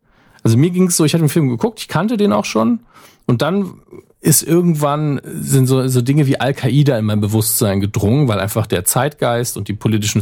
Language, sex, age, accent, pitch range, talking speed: German, male, 40-59, German, 105-135 Hz, 210 wpm